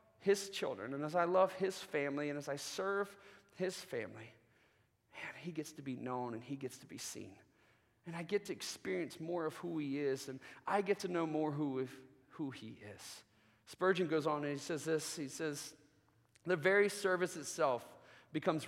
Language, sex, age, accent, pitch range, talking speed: English, male, 30-49, American, 145-195 Hz, 195 wpm